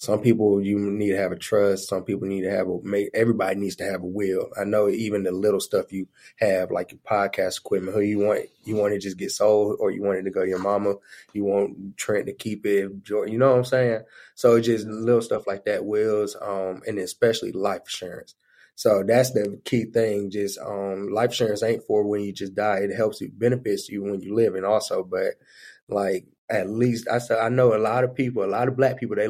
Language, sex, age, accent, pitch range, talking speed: English, male, 20-39, American, 100-125 Hz, 240 wpm